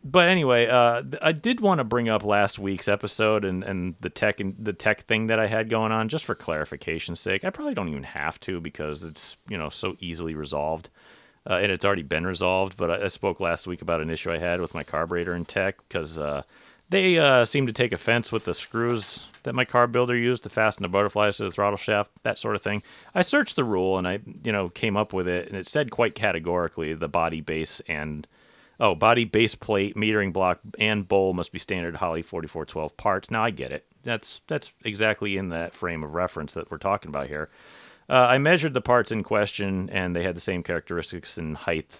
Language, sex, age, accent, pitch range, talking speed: English, male, 40-59, American, 85-110 Hz, 230 wpm